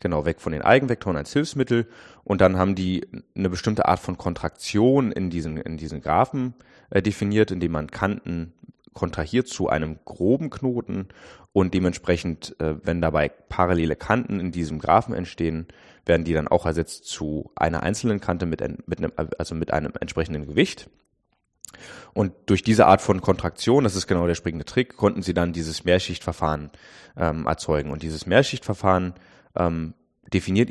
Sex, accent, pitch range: male, German, 85-110 Hz